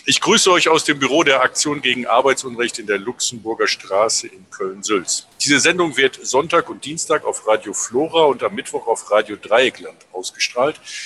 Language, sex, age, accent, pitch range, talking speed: German, male, 50-69, German, 130-190 Hz, 175 wpm